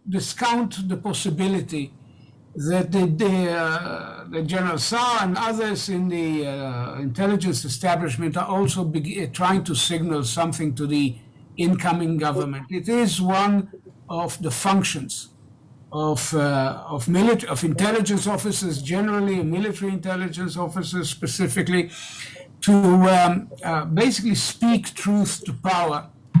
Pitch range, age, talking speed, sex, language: 150-190 Hz, 60-79, 125 wpm, male, English